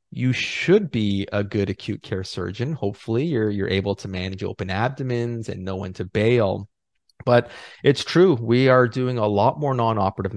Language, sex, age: English, male, 30-49